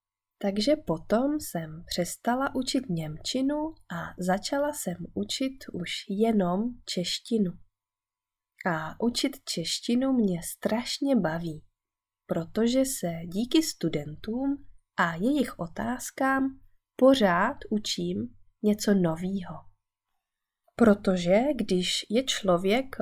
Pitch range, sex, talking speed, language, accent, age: 170-250 Hz, female, 90 wpm, Czech, native, 20-39